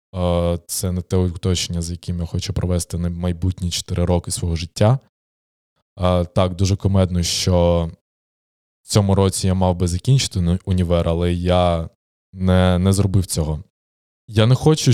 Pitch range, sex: 85-100 Hz, male